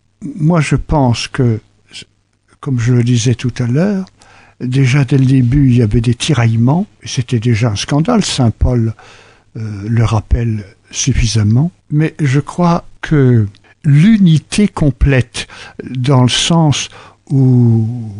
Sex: male